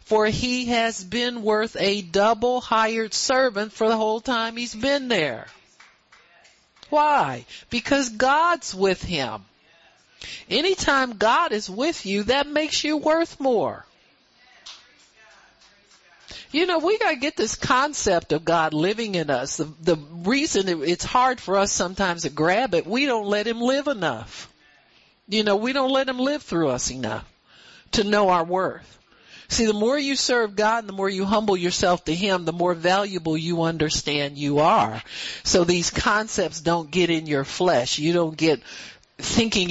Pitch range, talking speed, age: 165-235 Hz, 160 wpm, 50-69